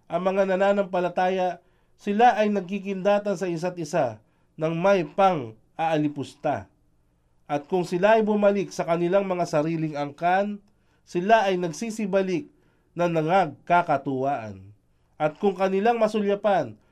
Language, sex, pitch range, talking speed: Filipino, male, 145-200 Hz, 110 wpm